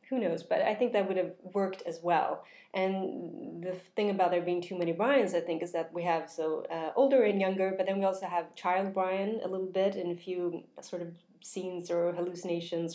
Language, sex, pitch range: English, female, 165-190 Hz